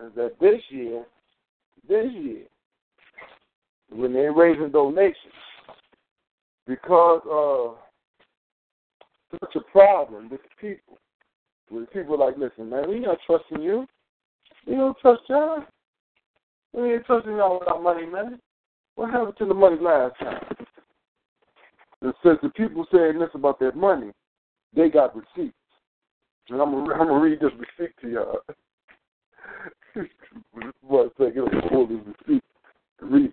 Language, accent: English, American